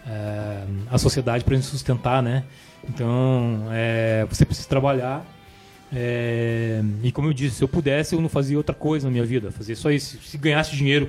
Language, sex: Portuguese, male